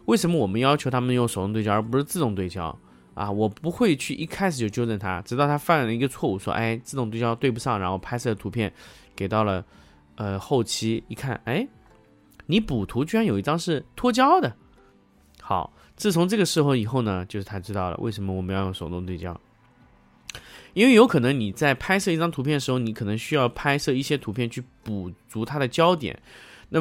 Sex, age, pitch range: male, 20-39, 100-150 Hz